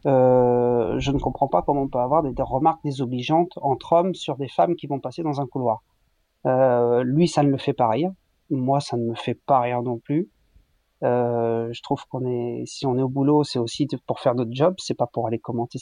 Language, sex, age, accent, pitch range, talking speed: French, male, 40-59, French, 120-145 Hz, 240 wpm